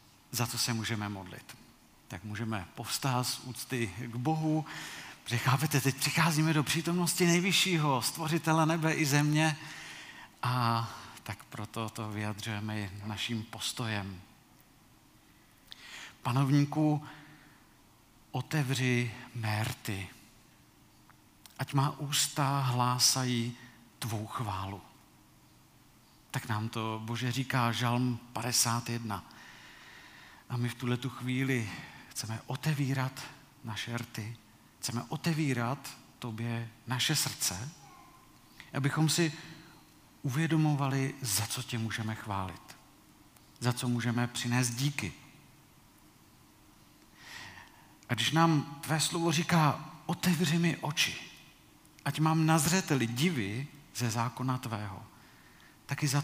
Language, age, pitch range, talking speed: Czech, 50-69, 115-150 Hz, 95 wpm